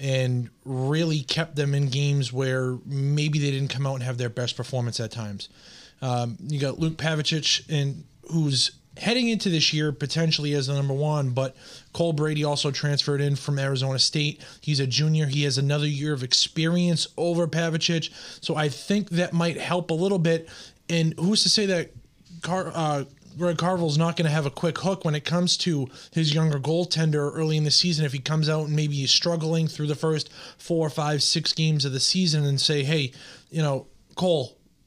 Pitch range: 130-165 Hz